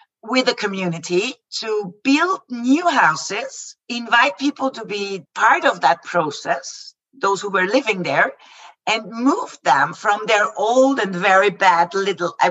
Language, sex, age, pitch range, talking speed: English, female, 50-69, 190-255 Hz, 150 wpm